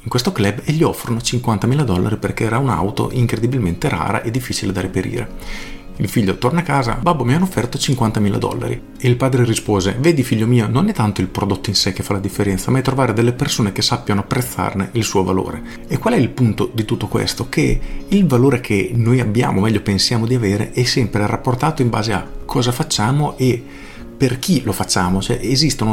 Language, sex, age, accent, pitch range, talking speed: Italian, male, 40-59, native, 105-125 Hz, 210 wpm